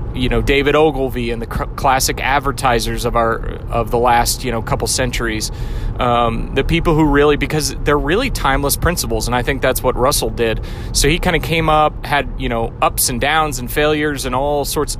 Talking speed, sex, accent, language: 210 wpm, male, American, English